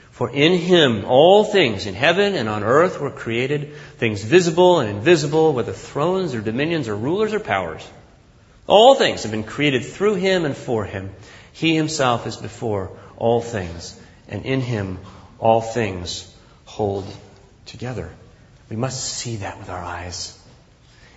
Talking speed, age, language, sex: 155 wpm, 40-59, English, male